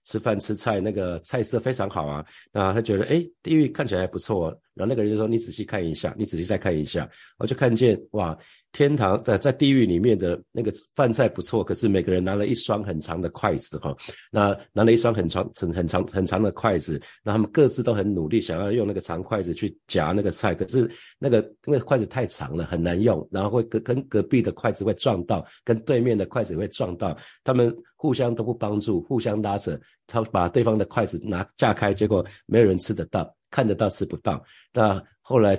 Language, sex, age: Chinese, male, 50-69